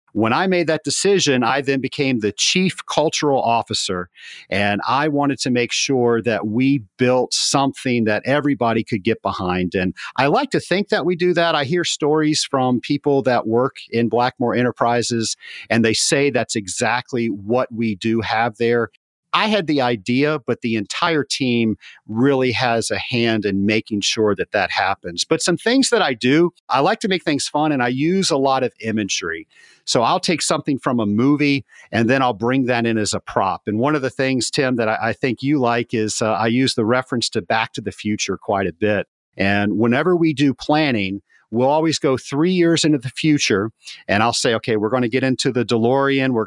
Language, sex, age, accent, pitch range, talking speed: English, male, 40-59, American, 115-145 Hz, 205 wpm